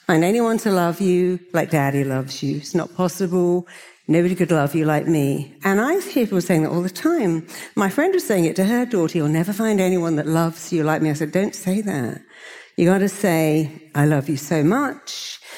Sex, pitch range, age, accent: female, 165-240 Hz, 60-79, British